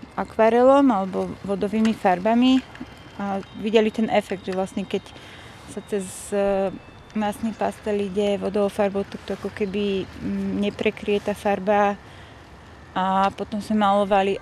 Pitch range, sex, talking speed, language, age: 195-220 Hz, female, 125 wpm, Slovak, 20-39